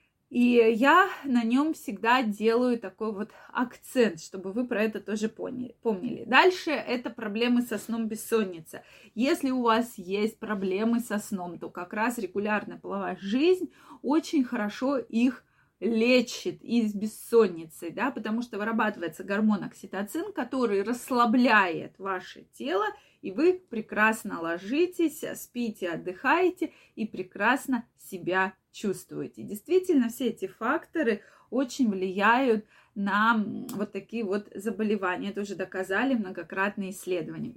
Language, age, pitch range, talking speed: Russian, 20-39, 200-250 Hz, 120 wpm